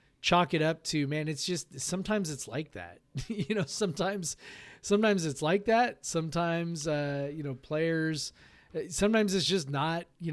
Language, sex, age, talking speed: English, male, 30-49, 165 wpm